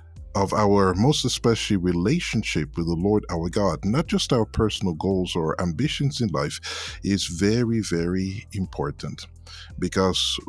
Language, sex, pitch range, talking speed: English, male, 85-120 Hz, 135 wpm